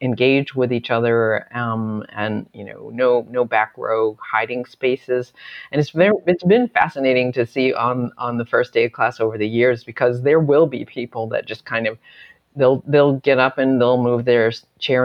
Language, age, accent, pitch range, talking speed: English, 40-59, American, 120-155 Hz, 200 wpm